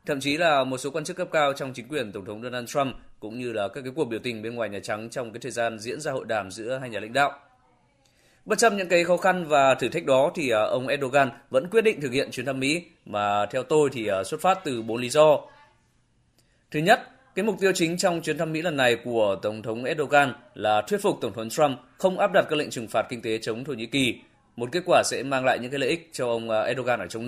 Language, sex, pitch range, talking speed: Vietnamese, male, 120-155 Hz, 270 wpm